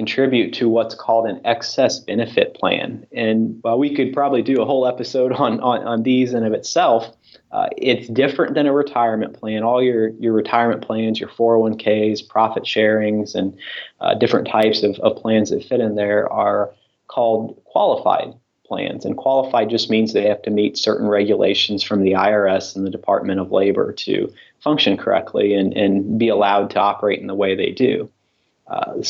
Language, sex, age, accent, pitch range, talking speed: English, male, 30-49, American, 105-120 Hz, 185 wpm